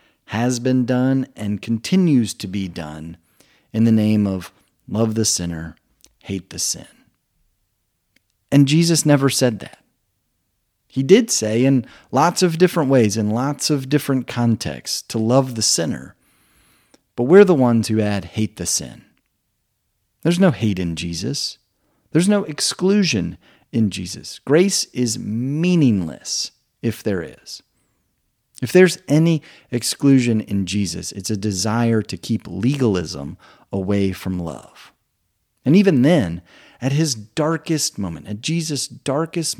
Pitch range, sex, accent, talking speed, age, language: 100-135 Hz, male, American, 135 wpm, 40-59, English